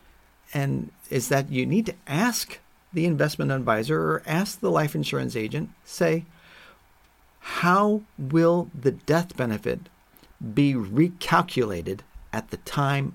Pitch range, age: 120-170 Hz, 40-59